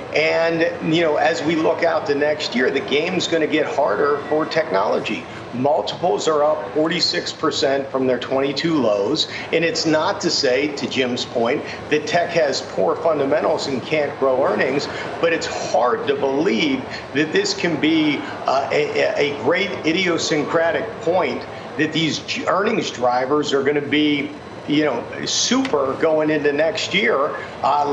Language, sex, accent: English, male, American